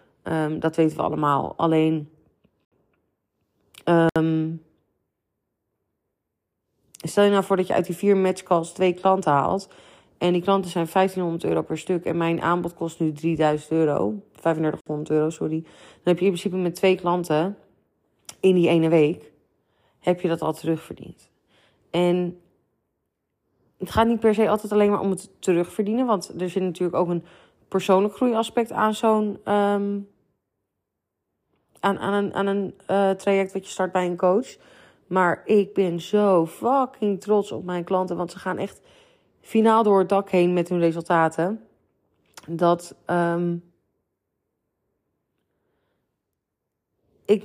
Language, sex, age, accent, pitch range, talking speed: Dutch, female, 30-49, Dutch, 160-195 Hz, 140 wpm